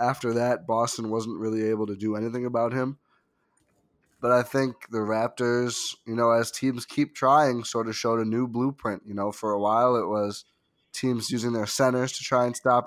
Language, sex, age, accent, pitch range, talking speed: English, male, 20-39, American, 110-130 Hz, 200 wpm